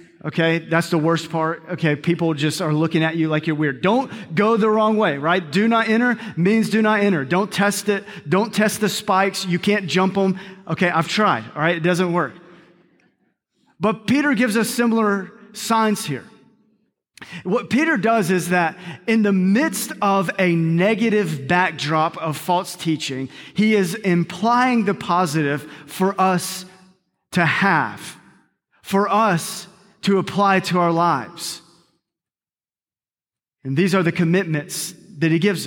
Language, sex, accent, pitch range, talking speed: English, male, American, 175-220 Hz, 155 wpm